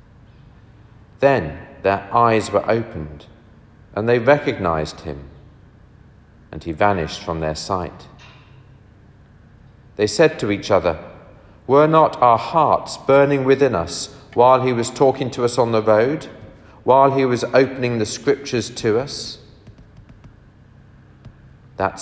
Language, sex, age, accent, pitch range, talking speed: English, male, 40-59, British, 90-125 Hz, 125 wpm